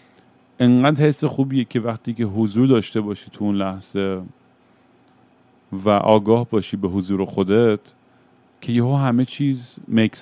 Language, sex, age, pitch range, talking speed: Persian, male, 40-59, 105-125 Hz, 140 wpm